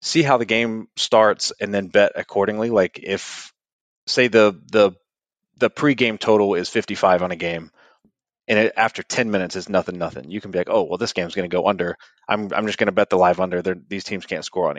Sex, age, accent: male, 30-49, American